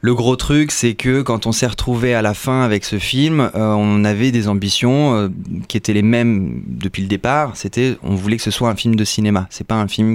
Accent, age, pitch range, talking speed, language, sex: French, 20-39, 95-110 Hz, 250 wpm, French, male